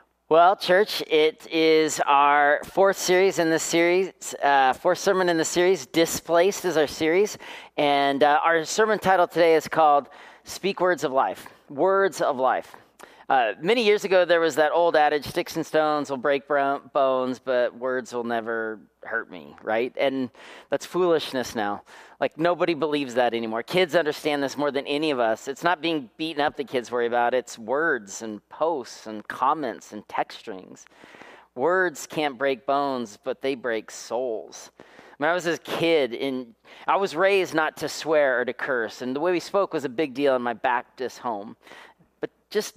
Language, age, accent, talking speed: English, 40-59, American, 180 wpm